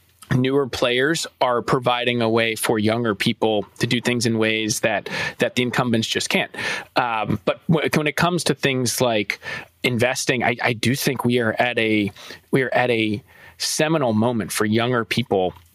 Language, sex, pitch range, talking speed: English, male, 115-130 Hz, 180 wpm